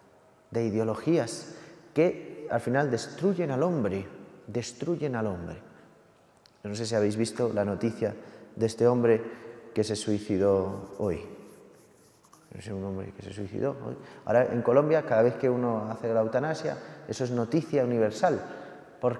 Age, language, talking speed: 30-49, Spanish, 155 wpm